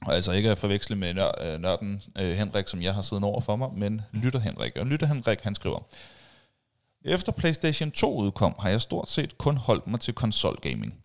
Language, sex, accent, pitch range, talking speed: Danish, male, native, 100-130 Hz, 200 wpm